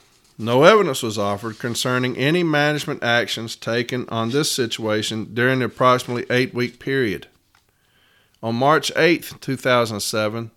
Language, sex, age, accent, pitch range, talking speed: English, male, 40-59, American, 115-140 Hz, 120 wpm